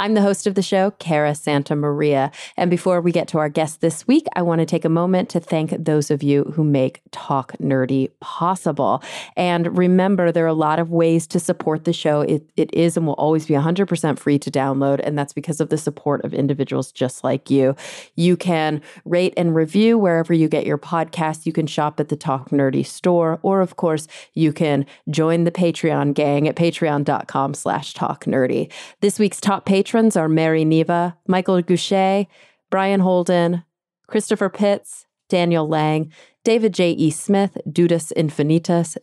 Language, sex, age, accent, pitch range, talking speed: English, female, 30-49, American, 150-180 Hz, 185 wpm